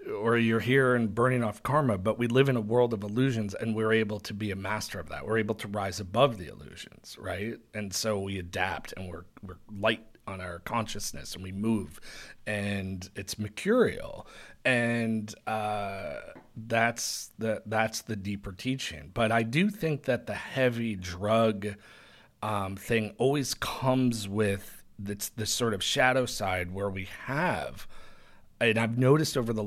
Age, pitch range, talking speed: 30-49, 100-120 Hz, 170 wpm